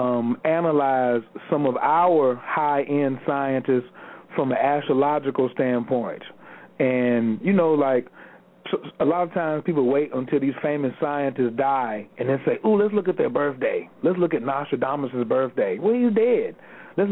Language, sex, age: English, male, 40-59